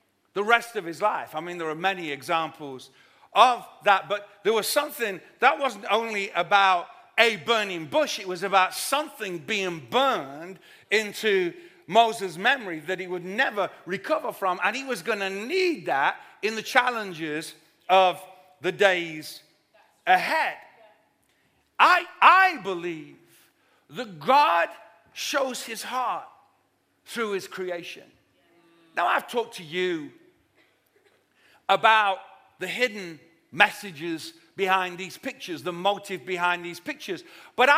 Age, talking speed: 50-69, 130 wpm